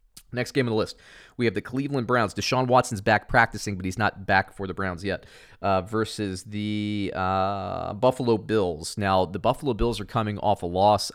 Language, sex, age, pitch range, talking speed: English, male, 30-49, 90-110 Hz, 200 wpm